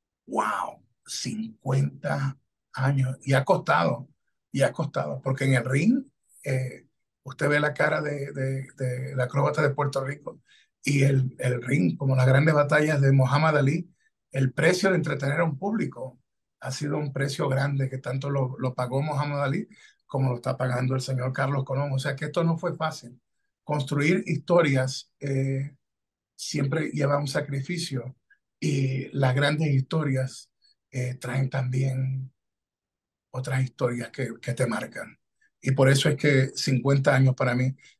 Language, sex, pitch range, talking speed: Spanish, male, 130-145 Hz, 155 wpm